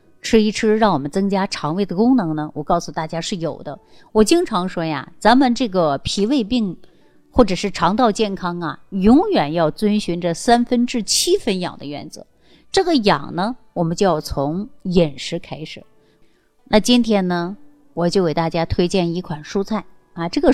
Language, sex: Chinese, female